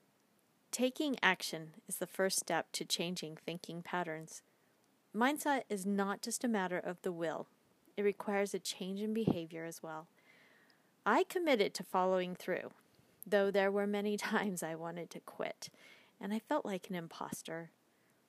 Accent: American